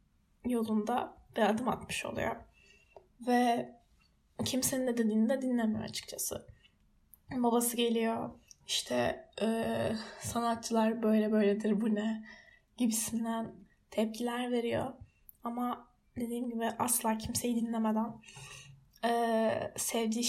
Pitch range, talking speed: 220-245 Hz, 90 wpm